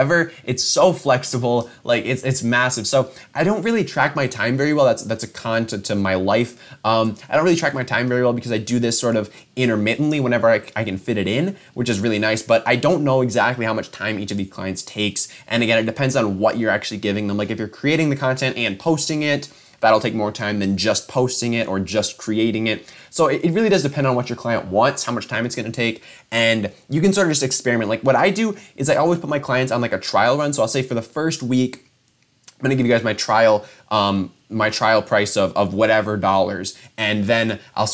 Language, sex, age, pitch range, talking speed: English, male, 20-39, 105-130 Hz, 250 wpm